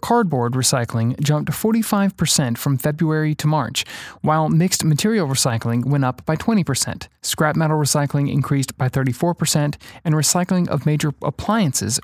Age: 30-49